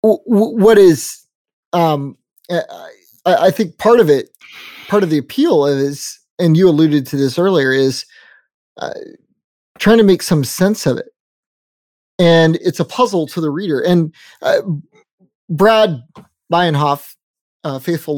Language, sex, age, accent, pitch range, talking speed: English, male, 30-49, American, 145-195 Hz, 140 wpm